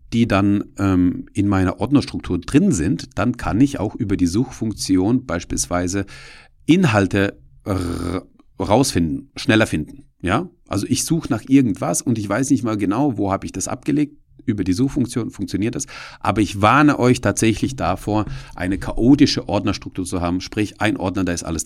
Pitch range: 95-125 Hz